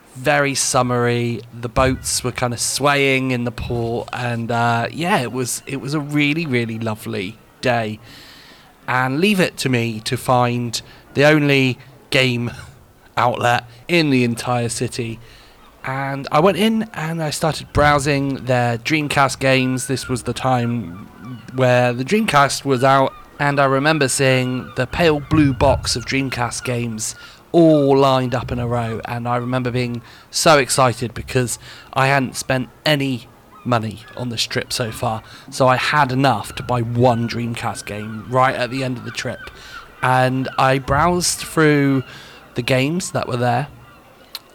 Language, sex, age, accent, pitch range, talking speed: English, male, 30-49, British, 120-140 Hz, 160 wpm